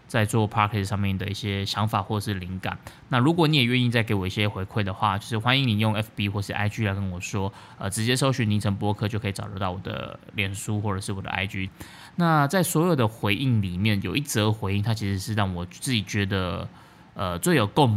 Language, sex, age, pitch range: Chinese, male, 20-39, 100-115 Hz